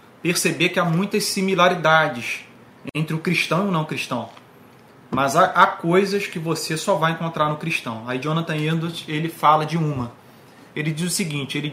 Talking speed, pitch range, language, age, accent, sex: 175 wpm, 130-165 Hz, Portuguese, 30-49, Brazilian, male